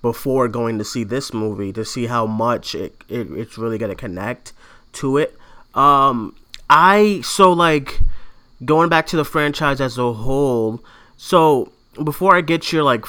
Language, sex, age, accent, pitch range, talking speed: English, male, 30-49, American, 115-145 Hz, 165 wpm